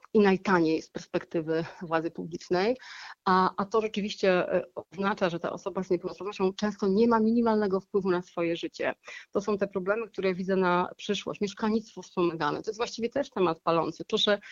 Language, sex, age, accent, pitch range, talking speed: Polish, female, 40-59, native, 180-210 Hz, 170 wpm